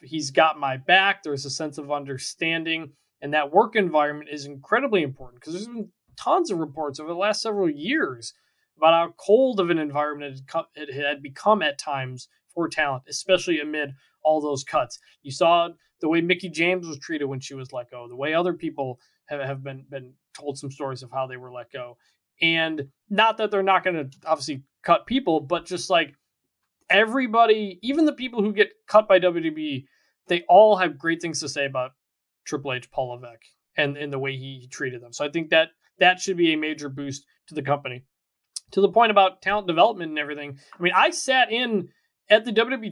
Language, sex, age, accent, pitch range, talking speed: English, male, 20-39, American, 140-185 Hz, 200 wpm